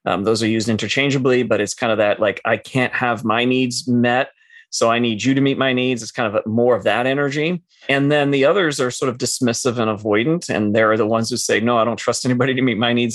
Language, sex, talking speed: English, male, 260 wpm